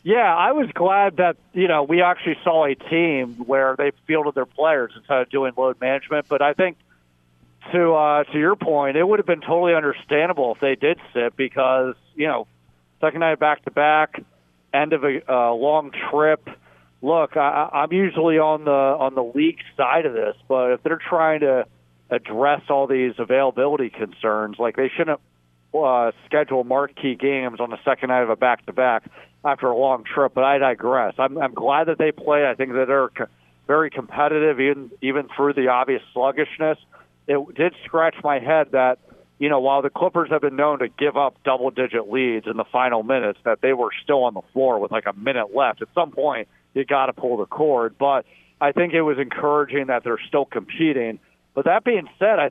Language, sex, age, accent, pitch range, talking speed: English, male, 40-59, American, 130-155 Hz, 200 wpm